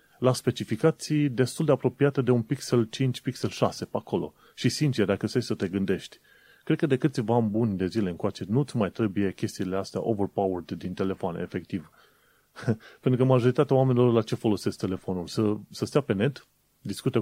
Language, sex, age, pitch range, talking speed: Romanian, male, 30-49, 100-130 Hz, 180 wpm